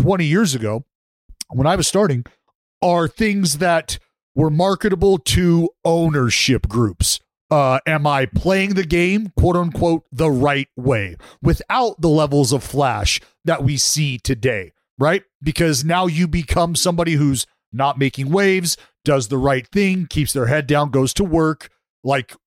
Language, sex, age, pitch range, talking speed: English, male, 40-59, 135-190 Hz, 150 wpm